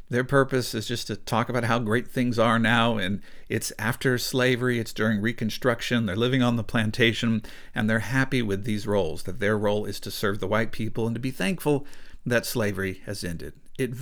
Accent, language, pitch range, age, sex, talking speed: American, English, 110-135 Hz, 50-69, male, 205 wpm